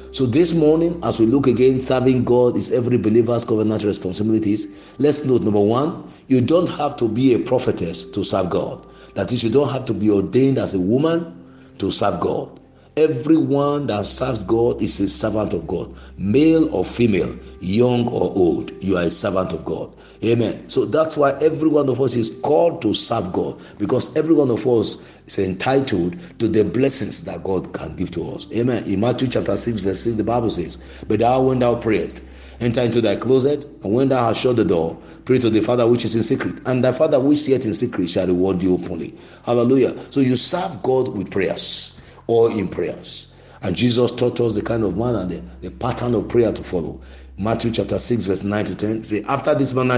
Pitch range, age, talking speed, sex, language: 100-130 Hz, 50-69, 210 wpm, male, English